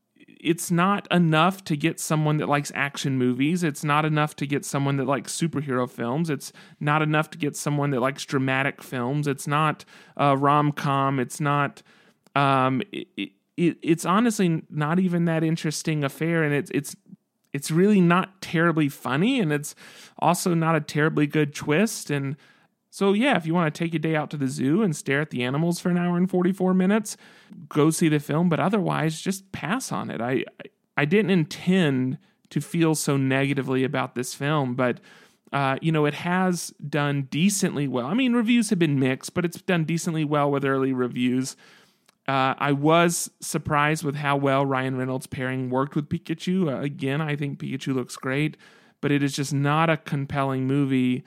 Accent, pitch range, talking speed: American, 140-175 Hz, 185 wpm